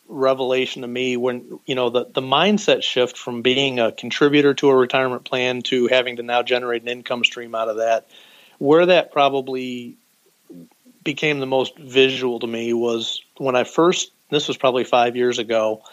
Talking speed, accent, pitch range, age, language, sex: 180 wpm, American, 120-135 Hz, 40-59, English, male